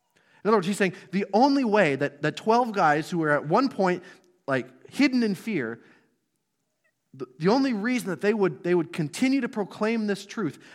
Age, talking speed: 30-49, 190 wpm